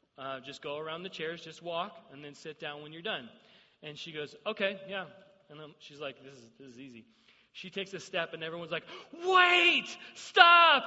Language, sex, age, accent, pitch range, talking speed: English, male, 30-49, American, 160-215 Hz, 210 wpm